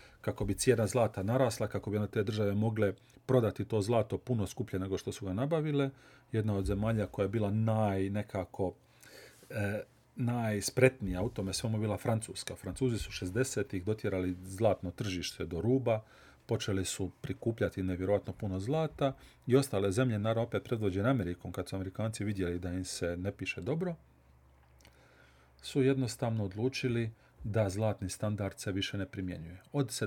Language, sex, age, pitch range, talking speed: Croatian, male, 40-59, 95-130 Hz, 155 wpm